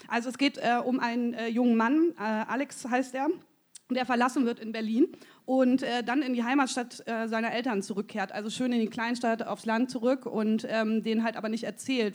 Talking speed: 210 wpm